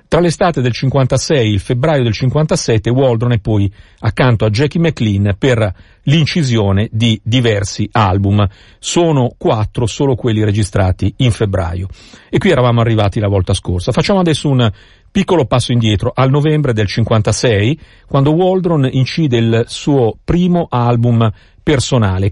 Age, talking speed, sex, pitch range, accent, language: 50-69, 140 wpm, male, 105-140 Hz, native, Italian